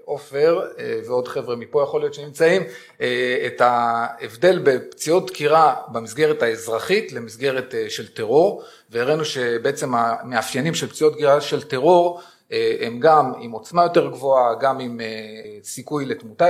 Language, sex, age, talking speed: Hebrew, male, 40-59, 125 wpm